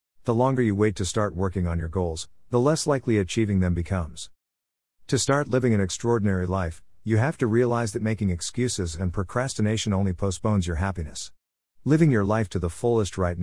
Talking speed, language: 190 wpm, English